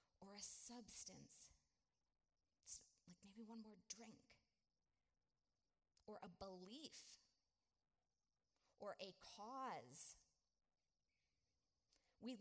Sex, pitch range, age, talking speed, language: female, 160-230 Hz, 30-49, 75 wpm, English